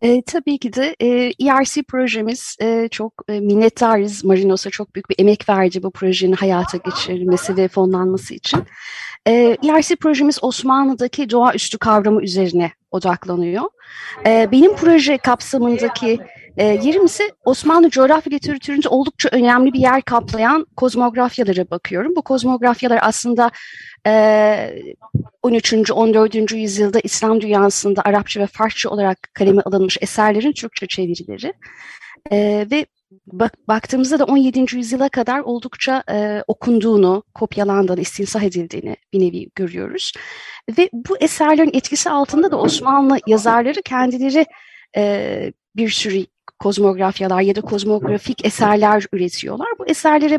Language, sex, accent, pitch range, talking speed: Turkish, female, native, 205-270 Hz, 115 wpm